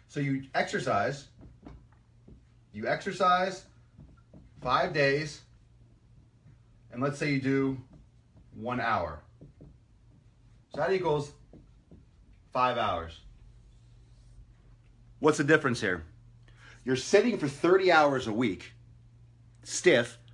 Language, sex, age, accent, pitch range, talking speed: English, male, 30-49, American, 115-150 Hz, 90 wpm